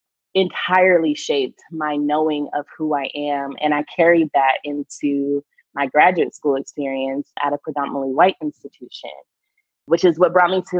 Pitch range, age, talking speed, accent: 145-165 Hz, 20-39, 155 wpm, American